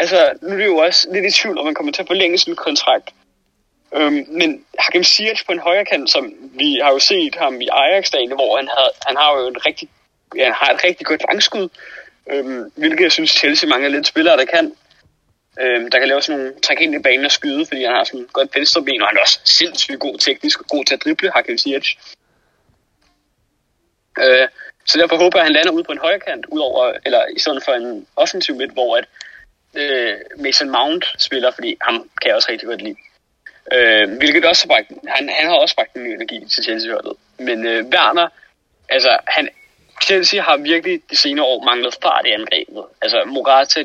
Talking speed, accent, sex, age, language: 215 wpm, native, male, 20-39, Danish